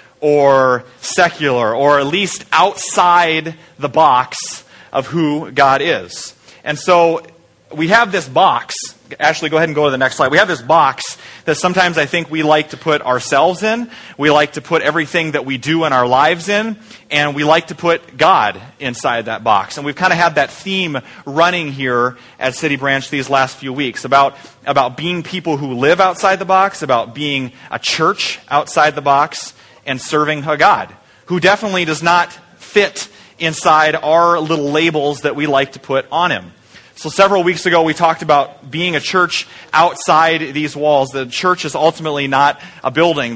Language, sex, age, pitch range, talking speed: English, male, 30-49, 135-170 Hz, 185 wpm